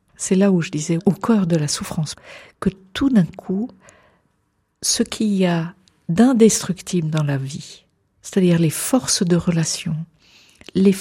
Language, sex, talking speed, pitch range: French, female, 155 wpm, 155-195 Hz